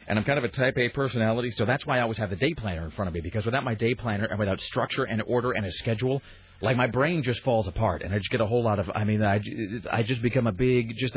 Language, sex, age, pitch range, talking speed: English, male, 40-59, 100-130 Hz, 300 wpm